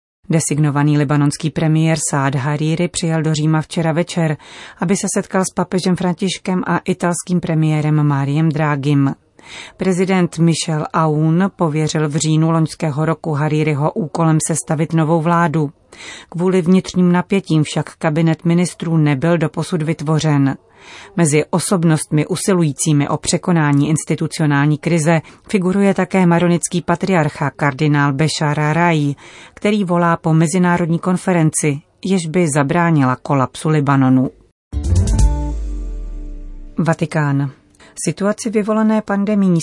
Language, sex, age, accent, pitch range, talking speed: Czech, female, 30-49, native, 150-175 Hz, 110 wpm